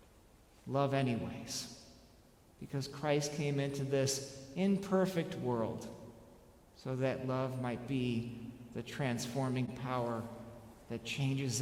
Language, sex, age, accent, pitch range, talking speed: English, male, 50-69, American, 125-160 Hz, 100 wpm